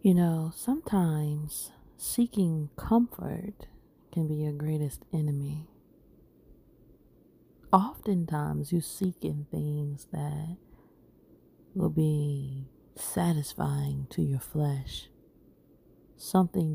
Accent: American